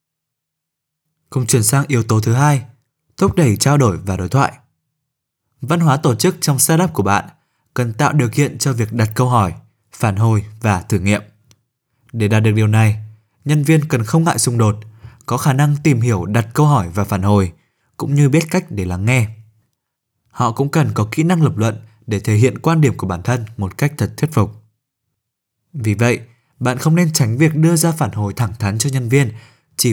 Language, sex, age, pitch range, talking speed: Vietnamese, male, 20-39, 110-150 Hz, 210 wpm